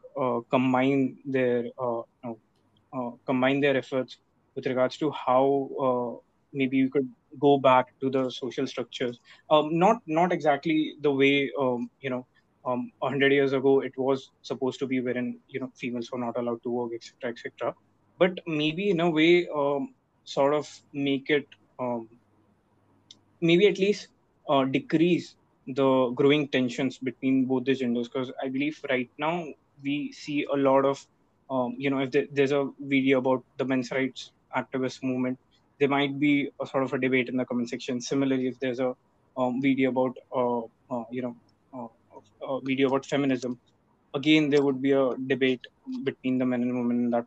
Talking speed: 175 wpm